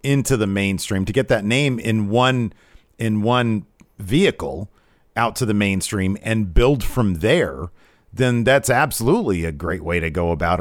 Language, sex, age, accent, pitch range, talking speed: English, male, 40-59, American, 100-145 Hz, 165 wpm